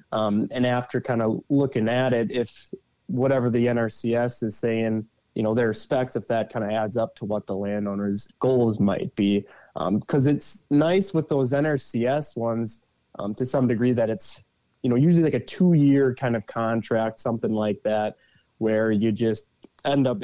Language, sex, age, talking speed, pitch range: English, male, 20-39, 185 wpm, 105-125 Hz